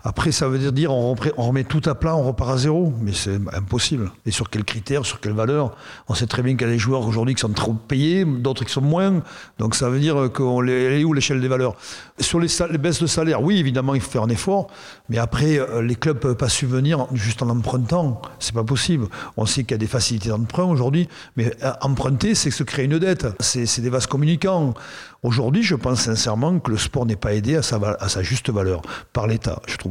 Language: French